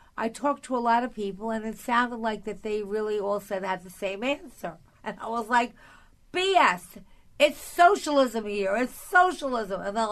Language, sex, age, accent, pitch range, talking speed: English, female, 50-69, American, 210-270 Hz, 190 wpm